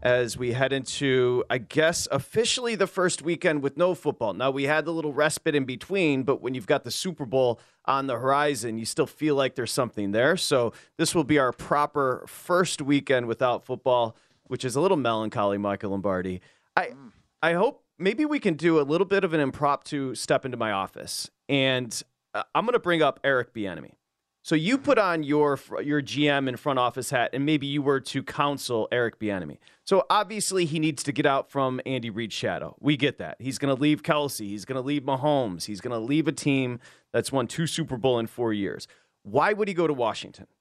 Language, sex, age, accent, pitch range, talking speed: English, male, 30-49, American, 125-155 Hz, 215 wpm